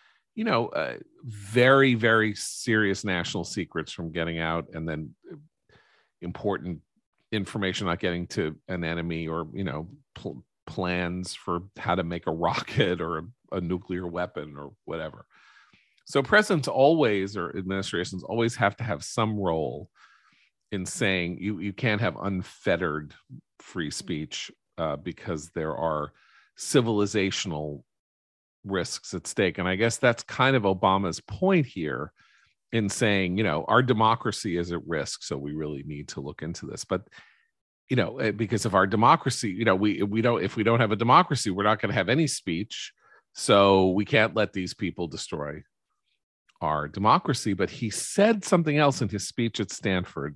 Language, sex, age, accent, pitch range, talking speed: English, male, 40-59, American, 85-115 Hz, 160 wpm